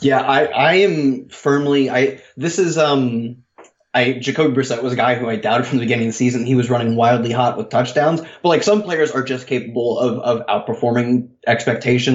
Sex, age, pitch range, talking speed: male, 20-39, 110-130 Hz, 205 wpm